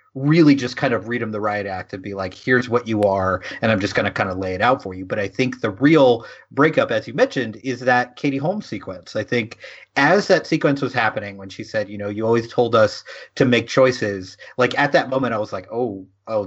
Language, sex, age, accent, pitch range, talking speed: English, male, 30-49, American, 115-150 Hz, 255 wpm